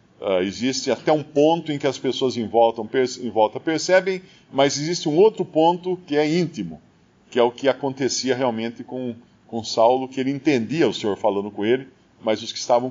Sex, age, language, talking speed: male, 50-69, Portuguese, 190 wpm